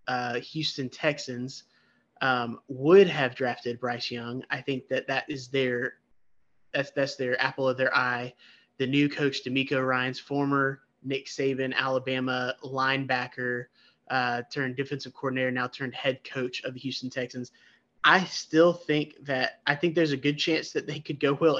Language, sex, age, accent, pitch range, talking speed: English, male, 20-39, American, 125-145 Hz, 165 wpm